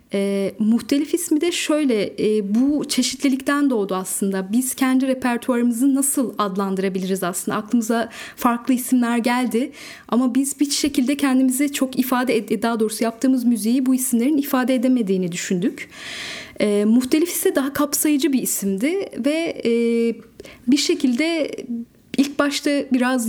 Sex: female